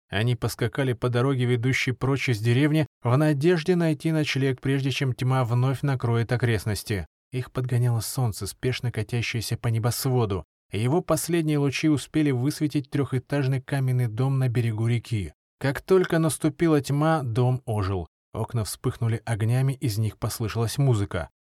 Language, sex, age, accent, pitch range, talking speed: Russian, male, 20-39, native, 115-150 Hz, 135 wpm